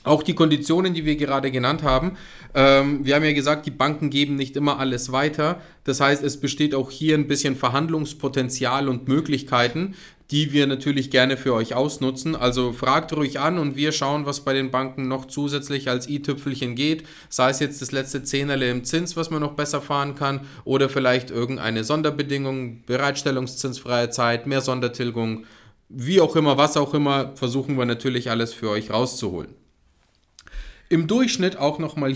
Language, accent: German, German